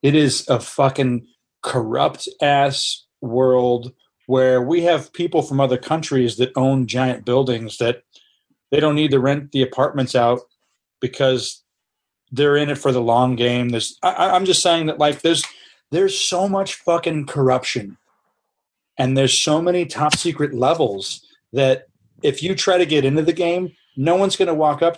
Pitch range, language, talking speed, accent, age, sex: 125-155 Hz, English, 160 wpm, American, 40-59, male